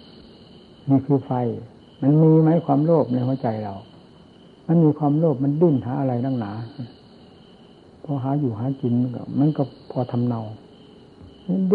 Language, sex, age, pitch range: Thai, male, 60-79, 120-160 Hz